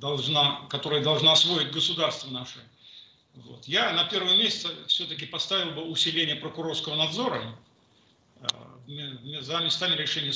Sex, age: male, 50-69